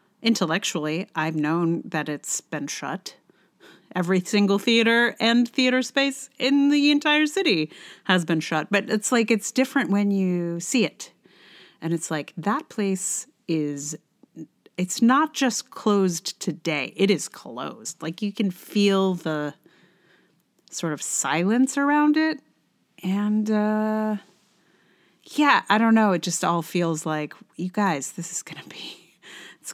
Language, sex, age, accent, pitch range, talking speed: English, female, 30-49, American, 170-230 Hz, 145 wpm